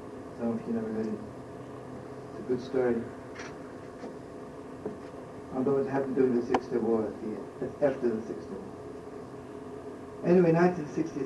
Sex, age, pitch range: male, 50-69, 135-150 Hz